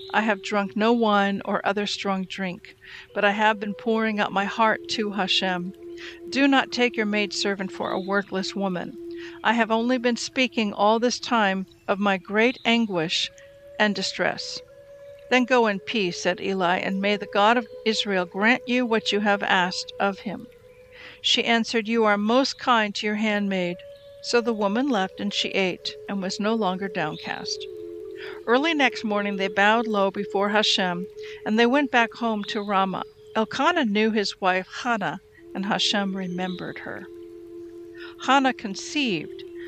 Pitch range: 195-255 Hz